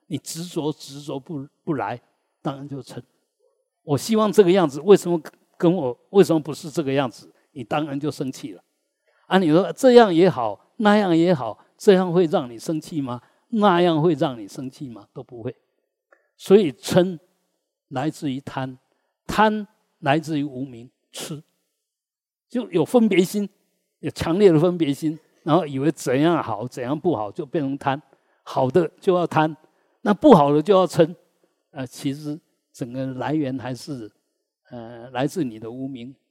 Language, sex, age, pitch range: Chinese, male, 50-69, 135-180 Hz